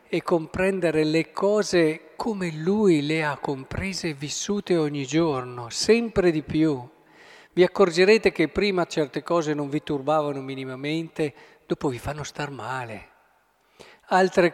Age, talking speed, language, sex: 50-69, 130 wpm, Italian, male